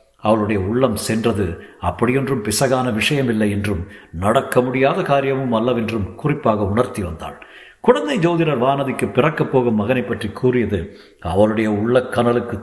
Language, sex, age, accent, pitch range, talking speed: Tamil, male, 50-69, native, 105-135 Hz, 125 wpm